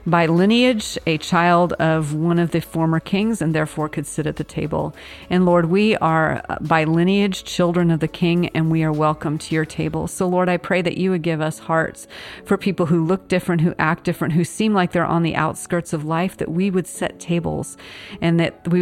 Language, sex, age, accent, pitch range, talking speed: English, female, 40-59, American, 155-180 Hz, 220 wpm